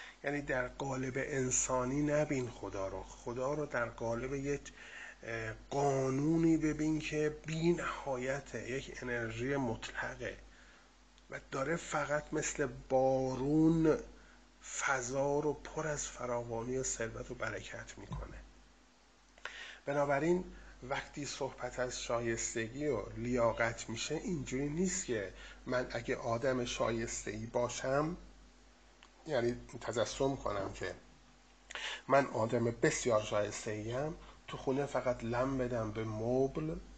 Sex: male